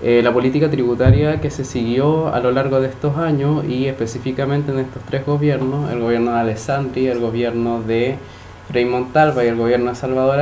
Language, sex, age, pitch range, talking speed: English, male, 20-39, 120-155 Hz, 185 wpm